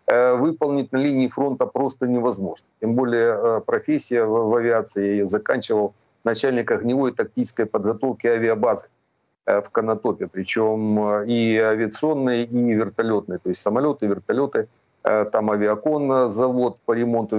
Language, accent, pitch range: Ukrainian, native, 110-135 Hz